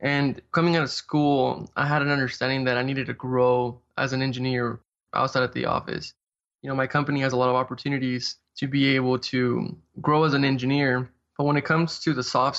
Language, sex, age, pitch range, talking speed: English, male, 20-39, 125-140 Hz, 215 wpm